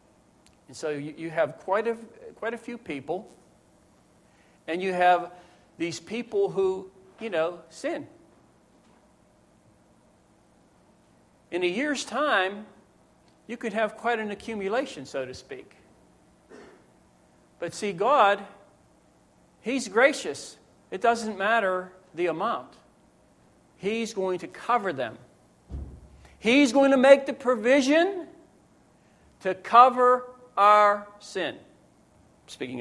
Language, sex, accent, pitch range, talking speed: English, male, American, 150-230 Hz, 105 wpm